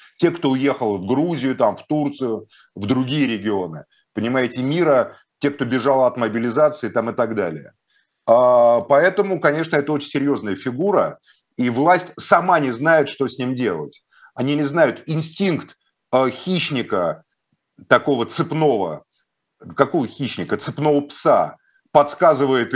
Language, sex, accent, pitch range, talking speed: Russian, male, native, 135-170 Hz, 125 wpm